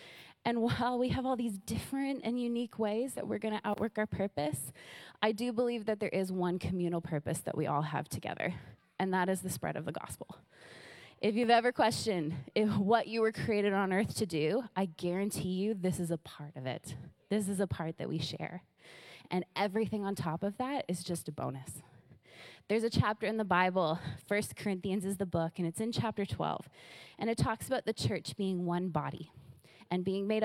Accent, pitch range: American, 160-210 Hz